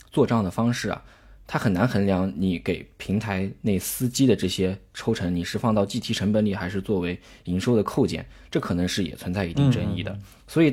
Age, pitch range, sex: 20-39, 90-110 Hz, male